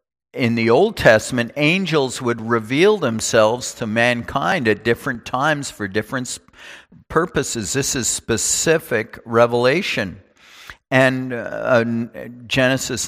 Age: 50-69